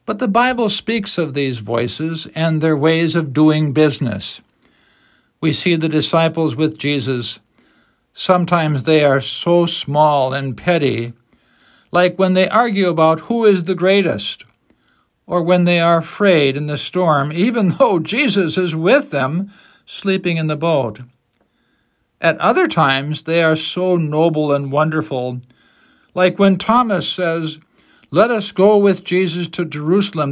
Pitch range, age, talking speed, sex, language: 140-185 Hz, 60-79, 145 wpm, male, English